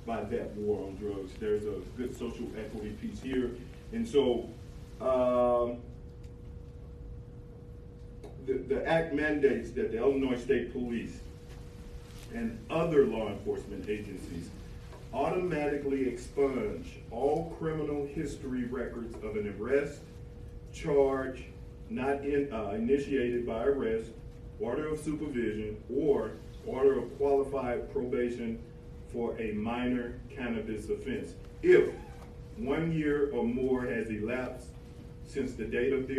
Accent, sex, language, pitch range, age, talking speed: American, male, English, 120-140 Hz, 40-59, 115 wpm